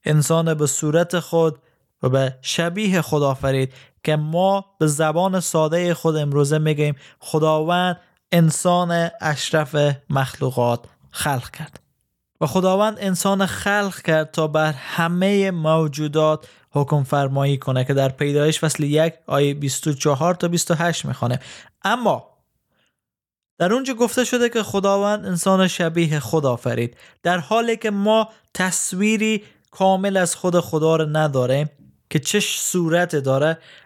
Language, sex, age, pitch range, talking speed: Persian, male, 20-39, 135-170 Hz, 120 wpm